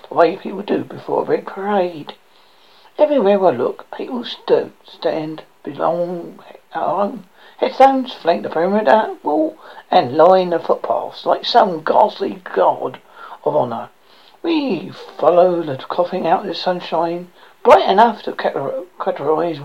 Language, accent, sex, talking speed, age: English, British, male, 125 wpm, 60-79